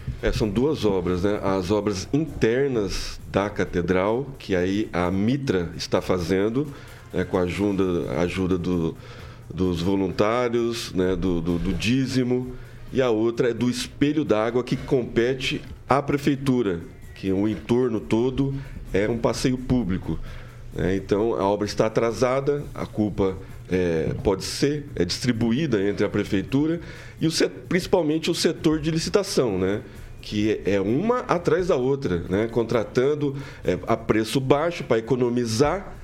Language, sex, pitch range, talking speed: Portuguese, male, 100-140 Hz, 145 wpm